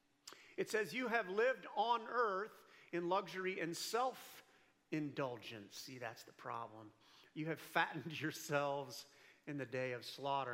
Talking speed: 135 wpm